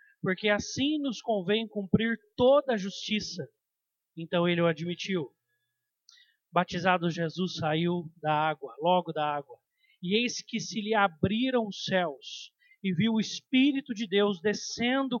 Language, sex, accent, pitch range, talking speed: Portuguese, male, Brazilian, 180-230 Hz, 140 wpm